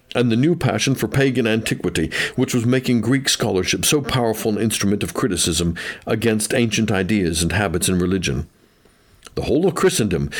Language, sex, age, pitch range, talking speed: English, male, 50-69, 105-135 Hz, 165 wpm